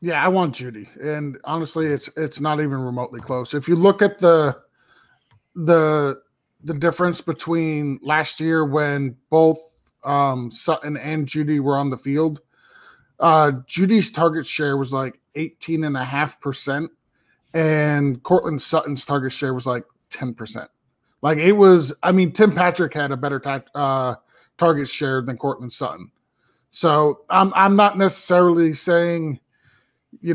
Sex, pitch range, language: male, 135-175 Hz, English